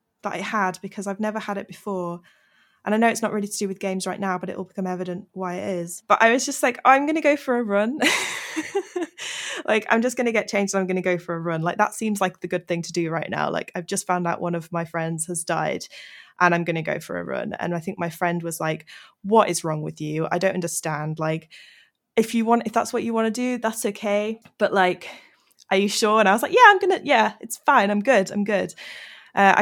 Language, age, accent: English, 20-39, British